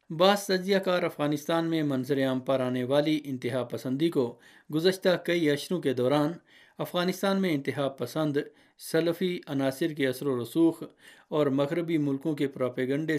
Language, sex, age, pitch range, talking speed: Urdu, male, 50-69, 135-170 Hz, 150 wpm